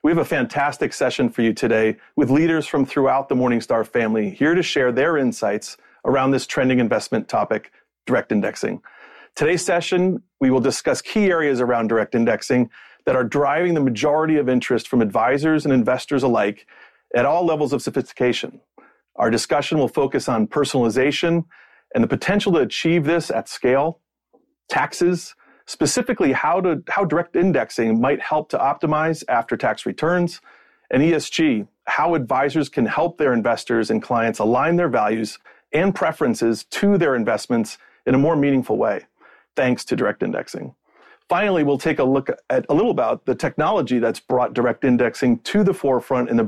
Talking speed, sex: 165 wpm, male